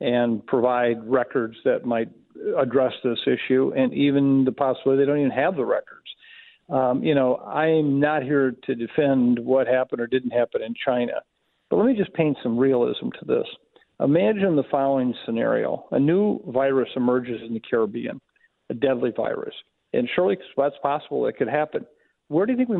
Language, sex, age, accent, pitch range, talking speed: English, male, 50-69, American, 125-150 Hz, 180 wpm